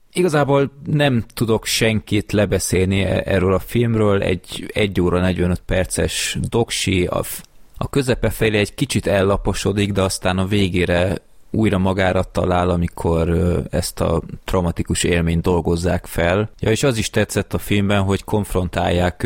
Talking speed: 135 wpm